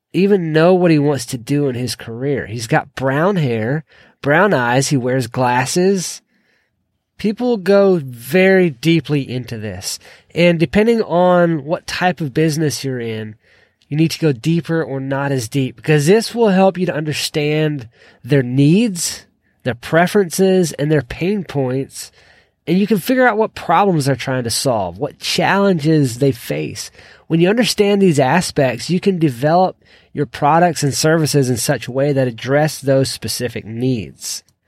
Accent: American